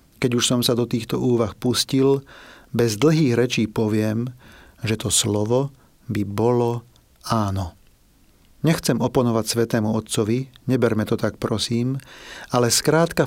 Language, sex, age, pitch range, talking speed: Czech, male, 40-59, 110-140 Hz, 125 wpm